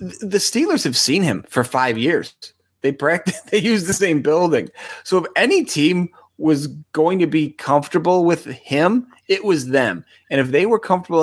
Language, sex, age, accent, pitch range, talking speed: English, male, 30-49, American, 120-155 Hz, 180 wpm